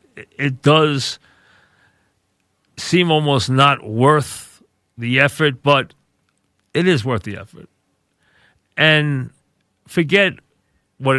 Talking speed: 90 wpm